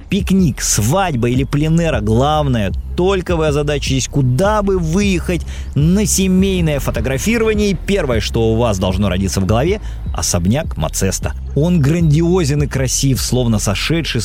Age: 30-49